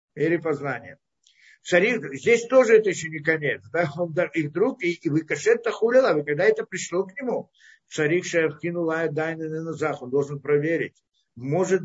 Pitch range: 155-205 Hz